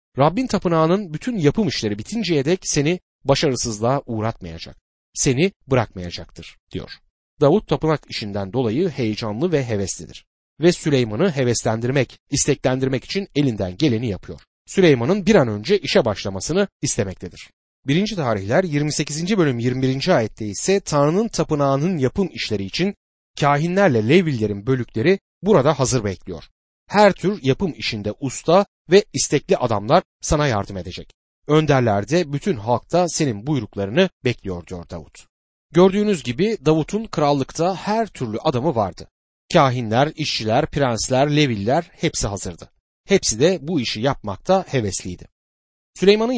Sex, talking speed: male, 120 wpm